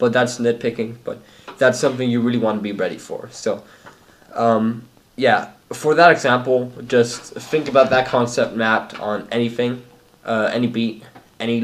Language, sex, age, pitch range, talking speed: English, male, 10-29, 110-120 Hz, 160 wpm